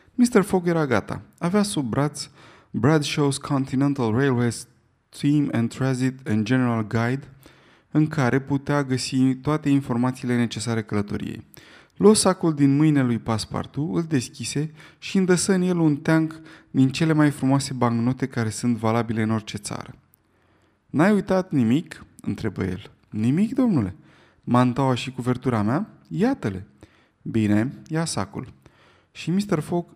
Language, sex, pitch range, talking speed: Romanian, male, 120-160 Hz, 135 wpm